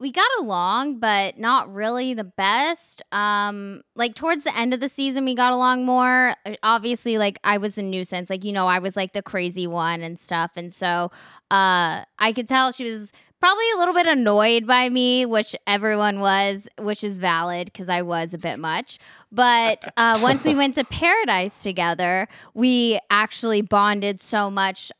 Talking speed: 185 wpm